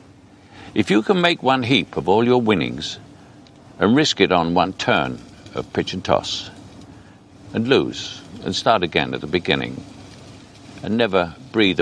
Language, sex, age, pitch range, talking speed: English, male, 60-79, 95-125 Hz, 155 wpm